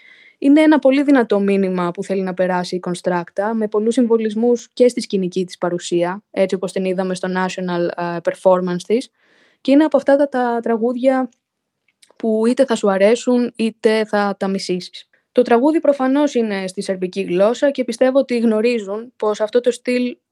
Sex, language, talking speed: female, Greek, 175 wpm